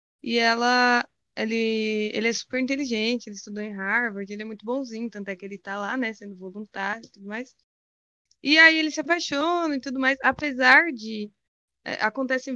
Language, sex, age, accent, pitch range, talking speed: Portuguese, female, 20-39, Brazilian, 210-265 Hz, 185 wpm